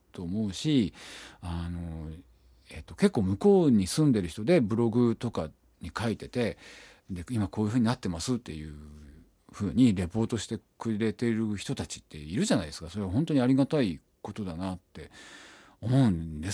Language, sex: Japanese, male